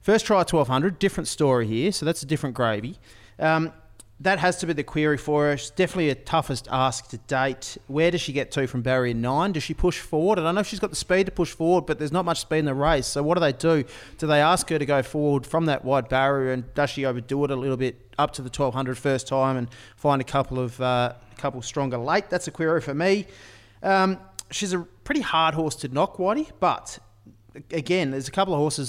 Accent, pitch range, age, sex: Australian, 130-160 Hz, 30-49, male